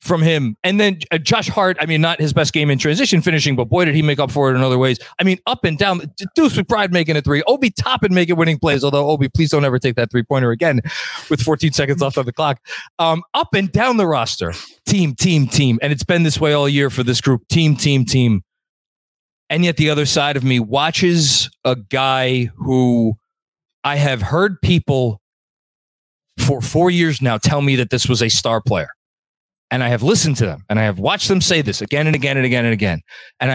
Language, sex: English, male